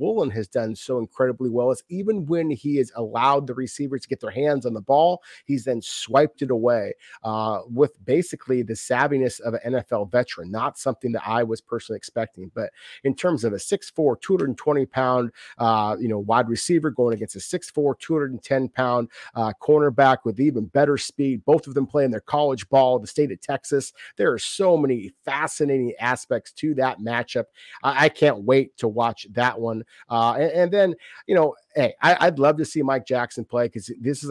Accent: American